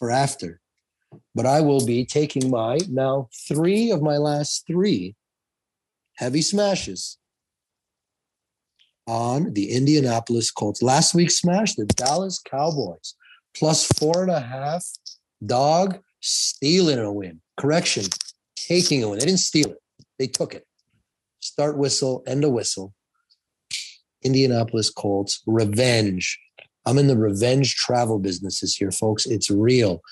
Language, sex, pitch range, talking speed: English, male, 115-160 Hz, 130 wpm